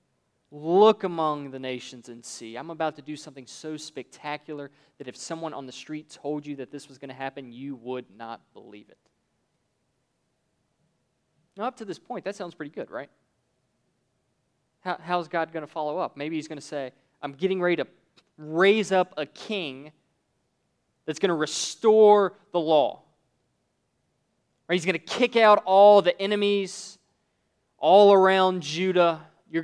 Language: English